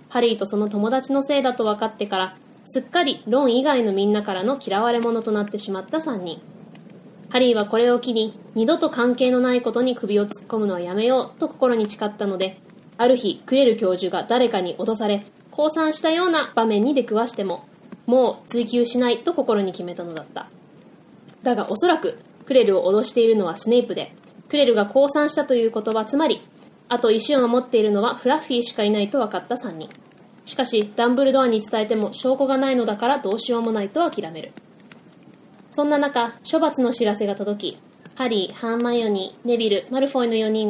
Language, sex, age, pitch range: Japanese, female, 20-39, 210-260 Hz